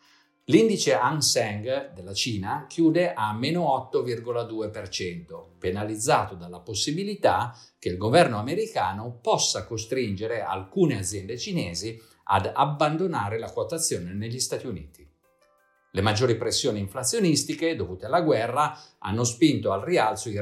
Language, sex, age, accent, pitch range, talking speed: Italian, male, 50-69, native, 100-155 Hz, 120 wpm